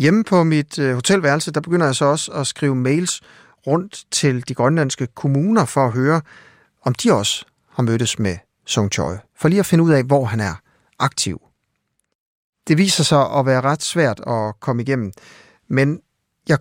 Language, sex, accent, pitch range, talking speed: Danish, male, native, 120-160 Hz, 180 wpm